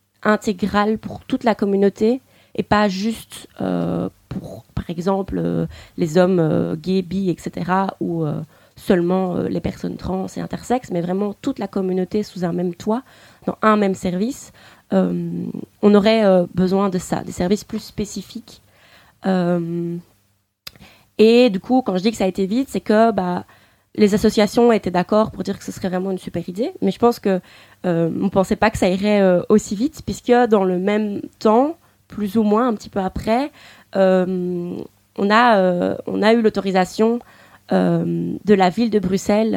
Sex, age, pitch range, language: female, 20-39, 175-215 Hz, French